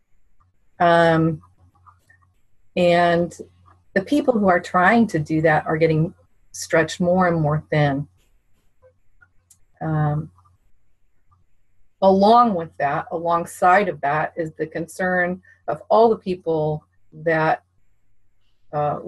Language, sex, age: English, female, 40-59